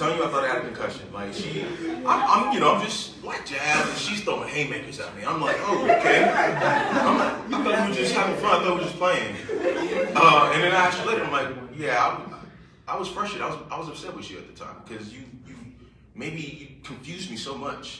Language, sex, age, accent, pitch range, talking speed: English, male, 20-39, American, 105-175 Hz, 245 wpm